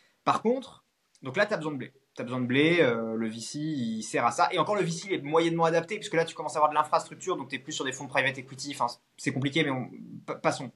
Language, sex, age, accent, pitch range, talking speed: French, male, 20-39, French, 130-190 Hz, 280 wpm